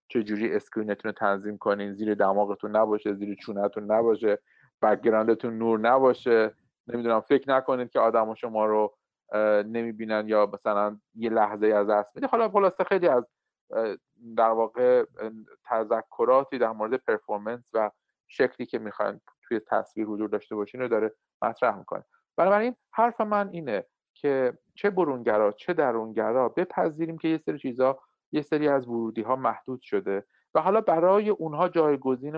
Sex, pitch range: male, 105-140 Hz